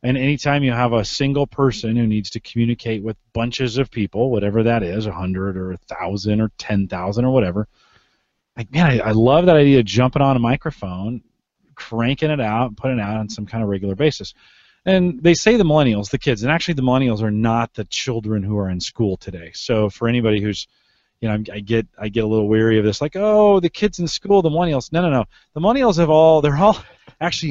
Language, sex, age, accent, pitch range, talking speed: English, male, 30-49, American, 110-150 Hz, 225 wpm